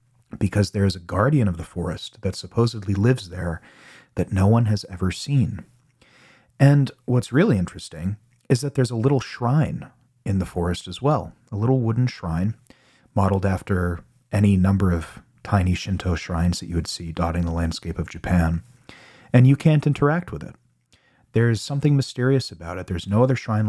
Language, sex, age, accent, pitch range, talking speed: English, male, 40-59, American, 90-125 Hz, 175 wpm